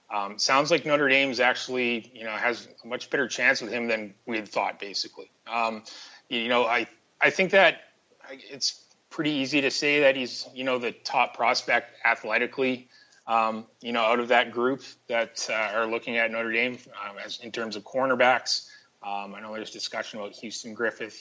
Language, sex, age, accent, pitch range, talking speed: English, male, 20-39, American, 110-130 Hz, 195 wpm